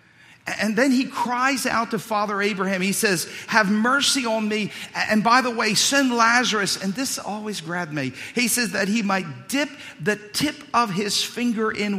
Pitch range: 150-225 Hz